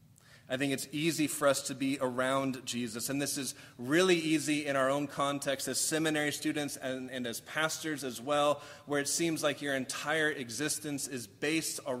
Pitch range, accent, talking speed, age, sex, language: 120-140 Hz, American, 185 wpm, 30-49, male, English